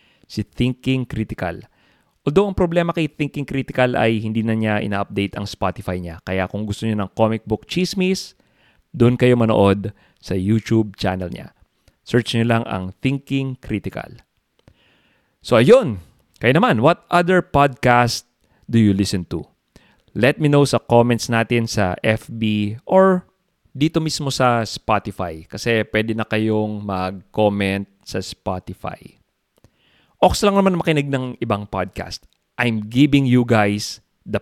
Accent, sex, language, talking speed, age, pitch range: Filipino, male, English, 140 wpm, 20-39, 100-135 Hz